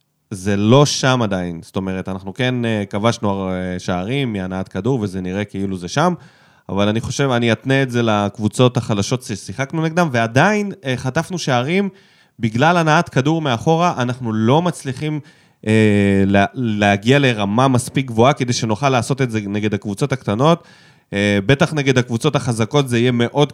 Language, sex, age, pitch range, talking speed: Hebrew, male, 20-39, 110-165 Hz, 155 wpm